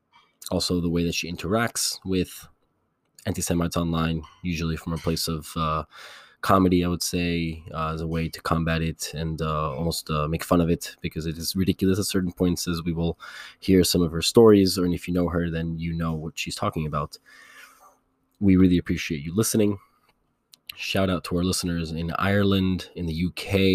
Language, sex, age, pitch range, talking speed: English, male, 20-39, 80-95 Hz, 190 wpm